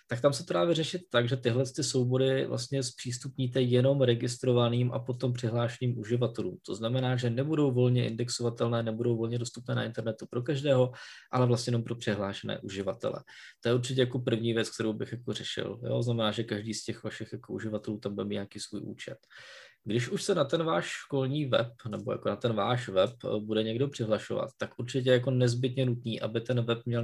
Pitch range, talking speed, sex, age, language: 110-125 Hz, 190 wpm, male, 20-39, Czech